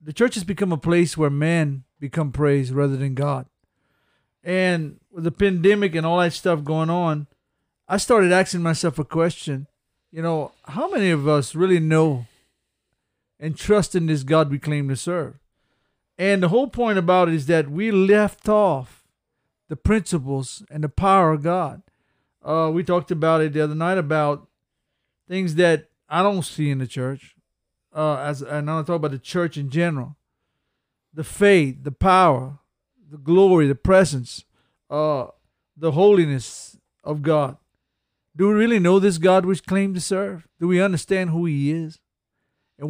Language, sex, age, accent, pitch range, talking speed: English, male, 50-69, American, 150-190 Hz, 170 wpm